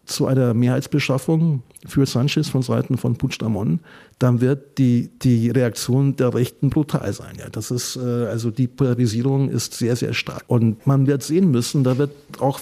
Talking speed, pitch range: 170 wpm, 120-140 Hz